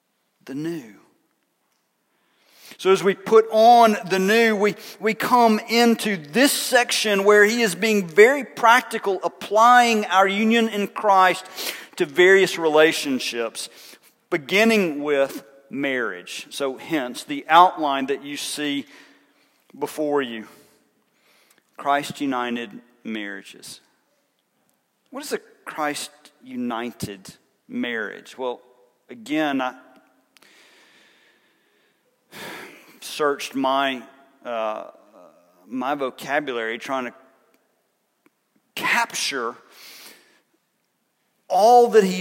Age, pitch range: 40-59, 150-220 Hz